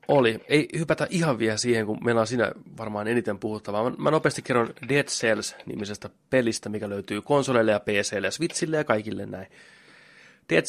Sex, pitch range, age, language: male, 105-125 Hz, 30-49, Finnish